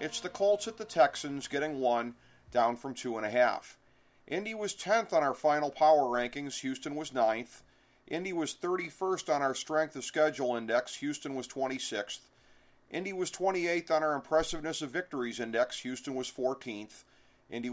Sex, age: male, 40-59